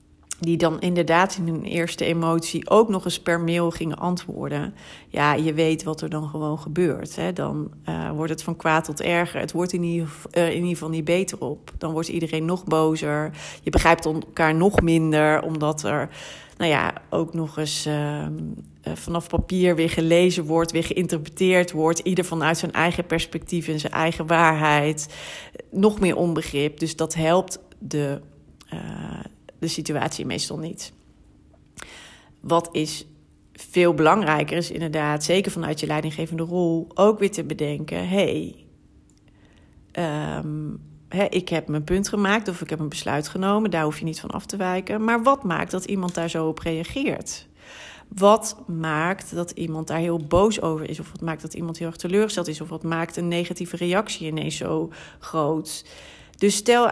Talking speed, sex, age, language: 165 wpm, female, 40-59, Dutch